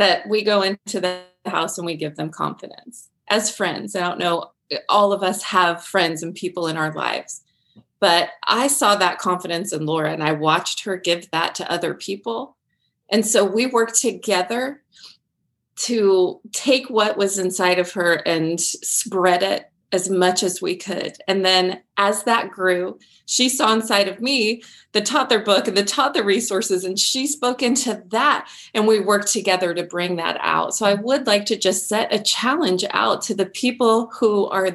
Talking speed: 185 wpm